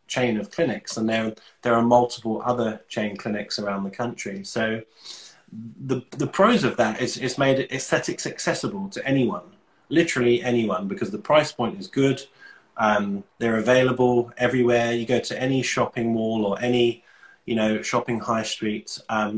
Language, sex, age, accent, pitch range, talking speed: English, male, 20-39, British, 110-130 Hz, 165 wpm